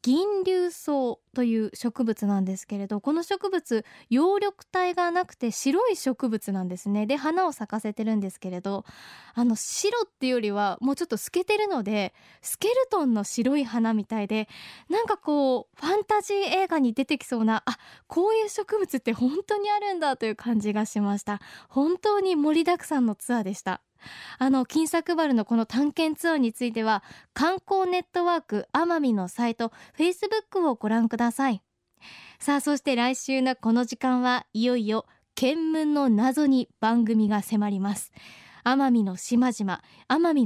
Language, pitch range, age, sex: Japanese, 225-335 Hz, 20-39, female